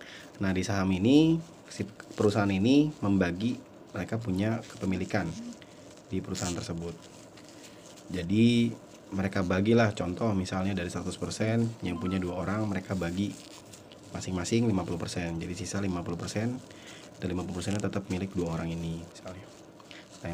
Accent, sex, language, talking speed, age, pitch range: native, male, Indonesian, 115 wpm, 30-49, 90-105 Hz